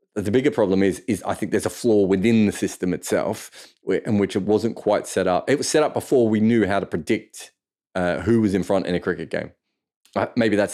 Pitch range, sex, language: 90-110 Hz, male, English